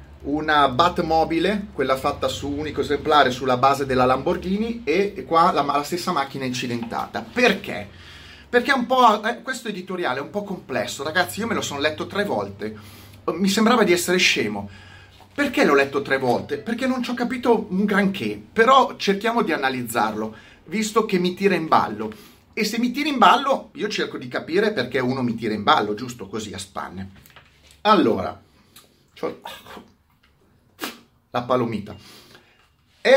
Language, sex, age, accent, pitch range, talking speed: Italian, male, 30-49, native, 125-200 Hz, 165 wpm